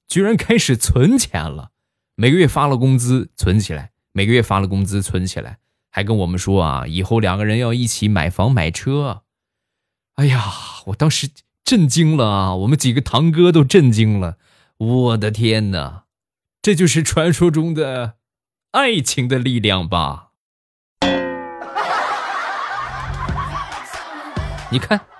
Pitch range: 95-135 Hz